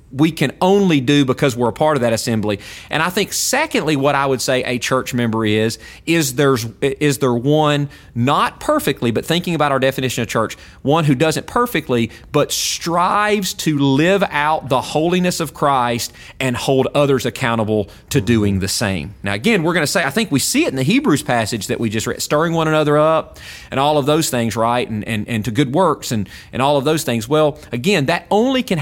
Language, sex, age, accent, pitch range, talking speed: English, male, 30-49, American, 120-160 Hz, 215 wpm